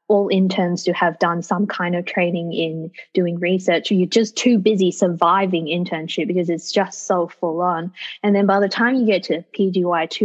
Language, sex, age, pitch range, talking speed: English, female, 20-39, 175-205 Hz, 195 wpm